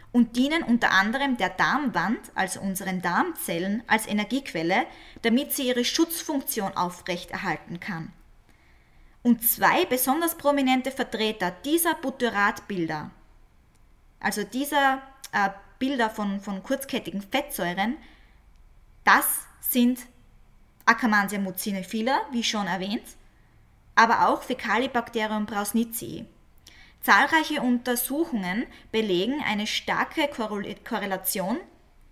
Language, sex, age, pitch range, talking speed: German, female, 20-39, 195-255 Hz, 90 wpm